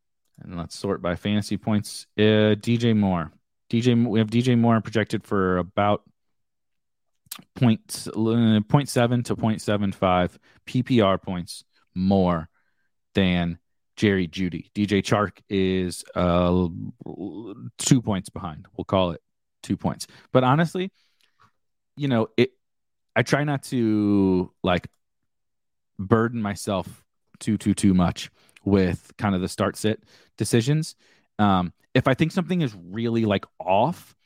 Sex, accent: male, American